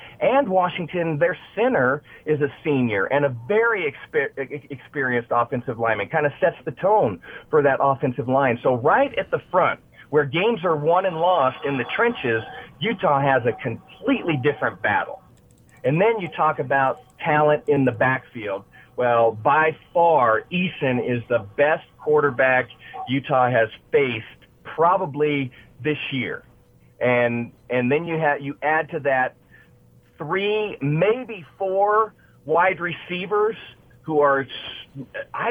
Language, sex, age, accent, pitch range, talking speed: English, male, 40-59, American, 125-170 Hz, 140 wpm